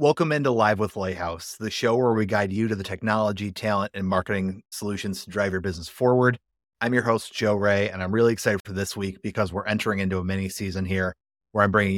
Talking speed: 230 wpm